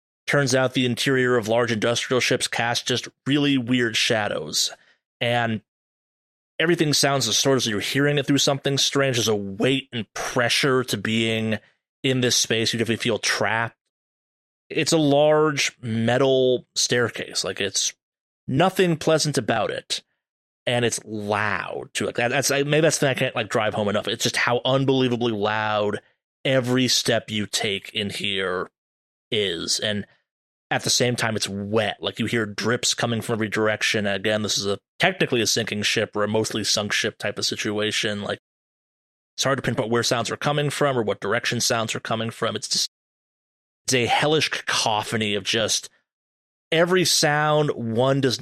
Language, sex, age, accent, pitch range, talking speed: English, male, 30-49, American, 105-130 Hz, 170 wpm